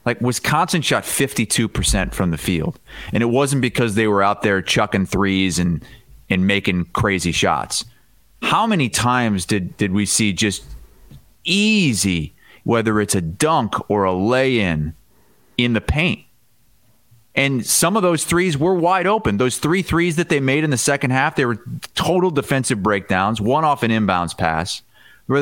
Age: 30-49